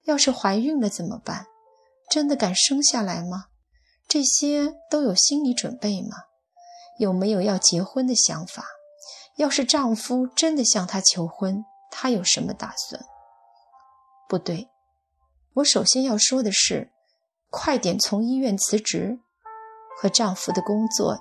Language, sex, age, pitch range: Chinese, female, 20-39, 195-275 Hz